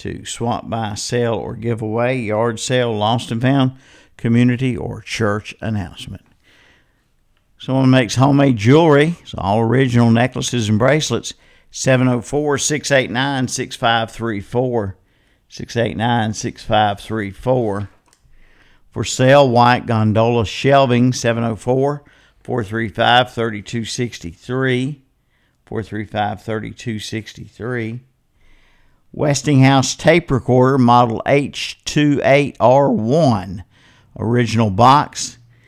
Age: 50-69